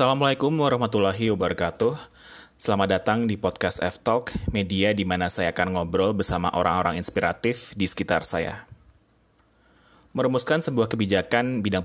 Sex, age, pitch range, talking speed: male, 20-39, 95-120 Hz, 120 wpm